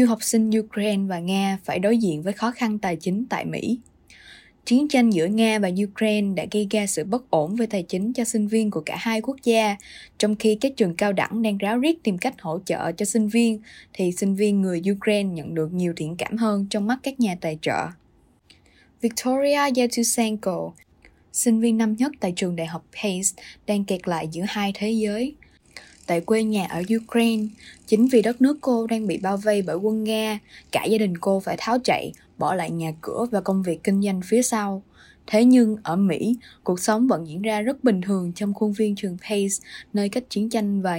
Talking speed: 215 wpm